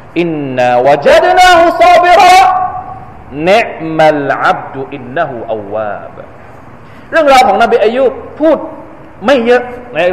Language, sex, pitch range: Thai, male, 165-270 Hz